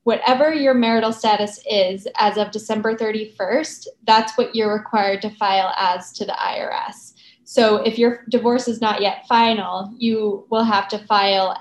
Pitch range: 205-235 Hz